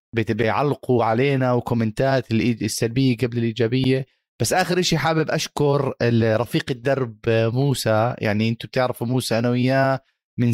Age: 20-39